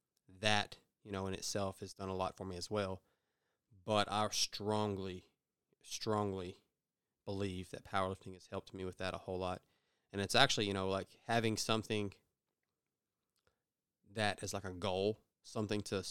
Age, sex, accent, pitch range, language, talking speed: 20-39, male, American, 95-110 Hz, English, 160 wpm